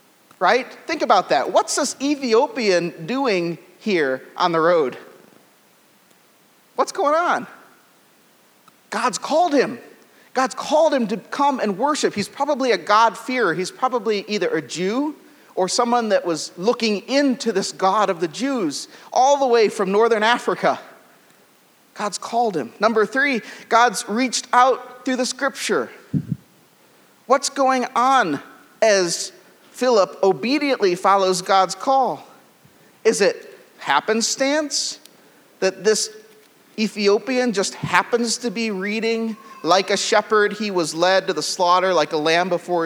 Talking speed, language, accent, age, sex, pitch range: 135 wpm, English, American, 40-59, male, 180-255 Hz